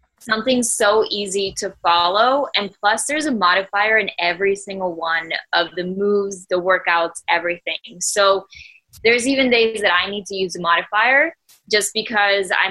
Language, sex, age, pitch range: English, female, 10-29, 185-220 Hz